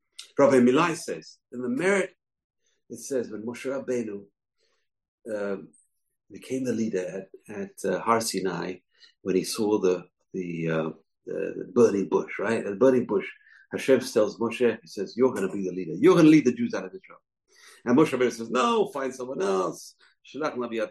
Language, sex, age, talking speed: English, male, 50-69, 180 wpm